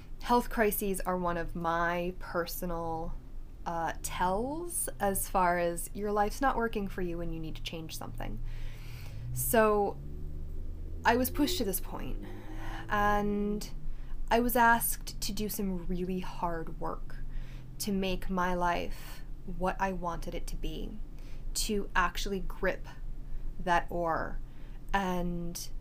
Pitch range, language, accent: 135-220 Hz, English, American